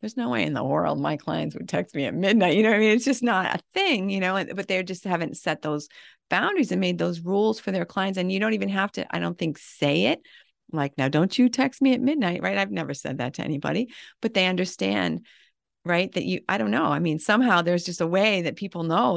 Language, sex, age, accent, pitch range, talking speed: English, female, 40-59, American, 150-205 Hz, 265 wpm